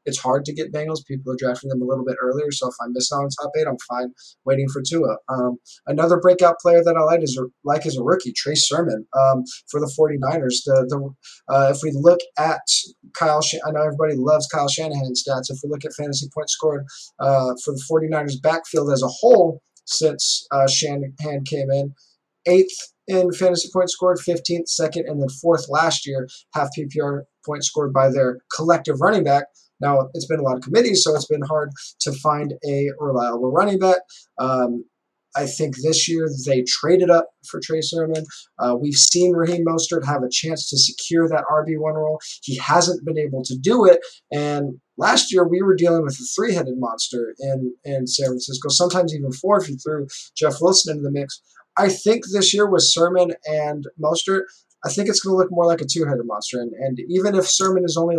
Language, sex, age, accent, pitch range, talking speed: English, male, 20-39, American, 135-170 Hz, 205 wpm